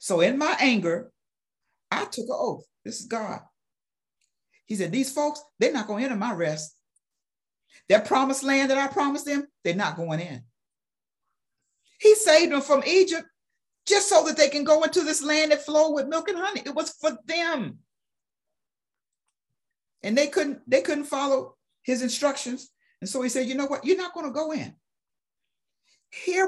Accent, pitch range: American, 205-300 Hz